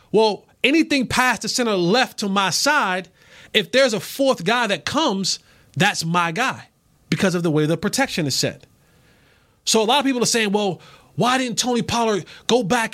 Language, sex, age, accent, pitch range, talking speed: English, male, 30-49, American, 170-235 Hz, 190 wpm